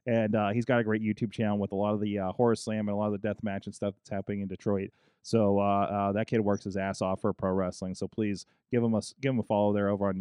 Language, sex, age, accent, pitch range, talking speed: English, male, 20-39, American, 100-120 Hz, 310 wpm